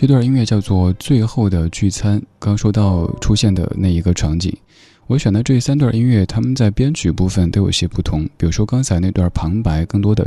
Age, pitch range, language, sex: 20-39, 90-120 Hz, Chinese, male